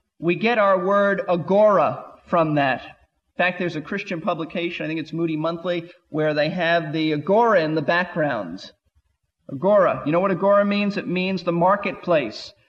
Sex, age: male, 40-59